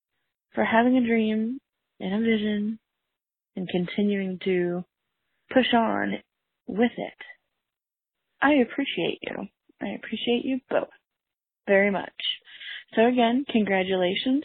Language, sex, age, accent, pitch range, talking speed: English, female, 20-39, American, 195-245 Hz, 110 wpm